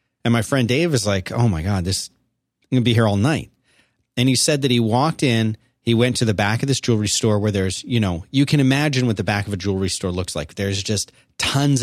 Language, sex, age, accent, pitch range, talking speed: English, male, 30-49, American, 105-130 Hz, 265 wpm